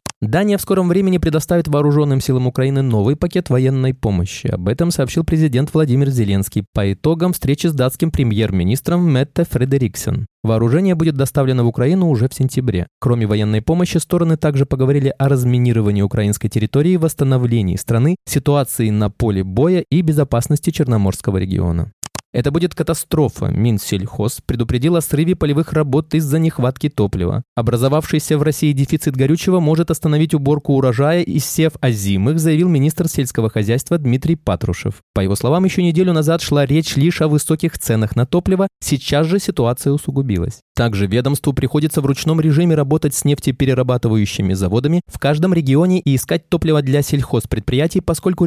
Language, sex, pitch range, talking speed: Russian, male, 120-160 Hz, 150 wpm